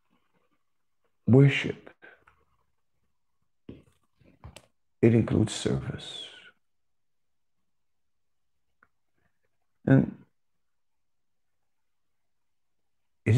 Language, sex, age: English, male, 60-79